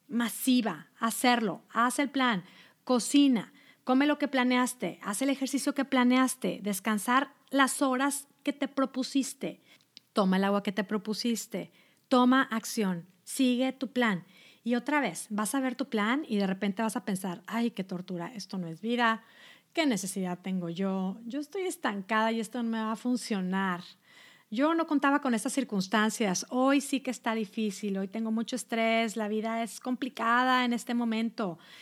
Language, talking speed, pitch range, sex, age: Spanish, 170 wpm, 215-270 Hz, female, 40-59